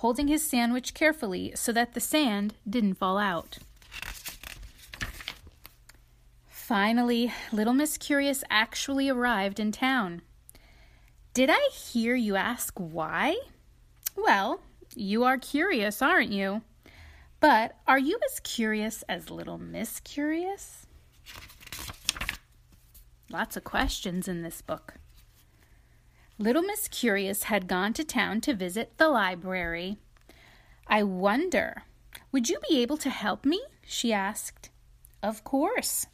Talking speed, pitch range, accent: 115 wpm, 195-285 Hz, American